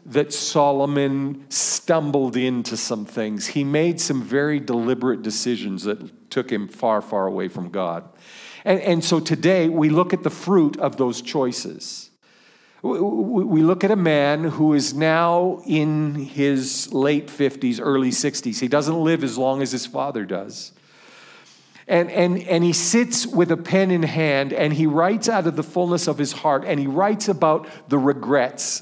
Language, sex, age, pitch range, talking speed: English, male, 50-69, 140-180 Hz, 170 wpm